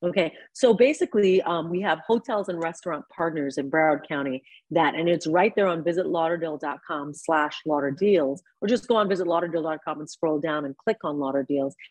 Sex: female